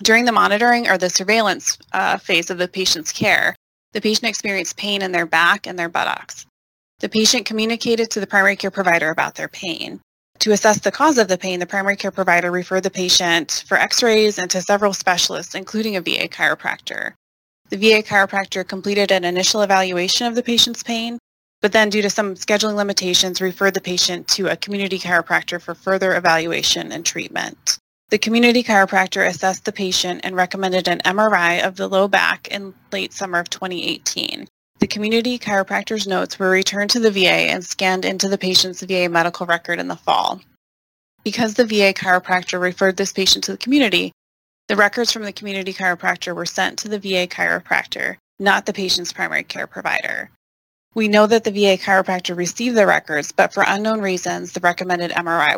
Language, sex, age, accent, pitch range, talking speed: English, female, 20-39, American, 180-210 Hz, 185 wpm